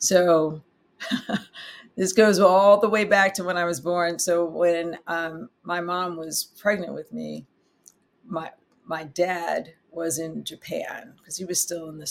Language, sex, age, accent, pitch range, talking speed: English, female, 50-69, American, 155-185 Hz, 165 wpm